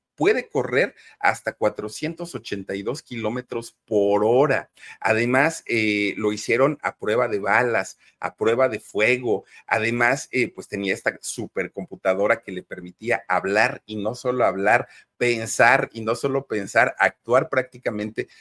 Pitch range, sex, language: 105-145 Hz, male, Spanish